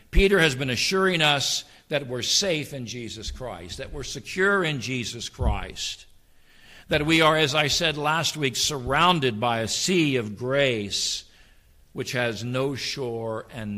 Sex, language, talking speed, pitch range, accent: male, English, 155 wpm, 105-145 Hz, American